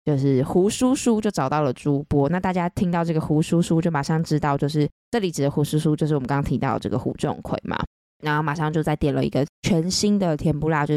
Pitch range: 145-175 Hz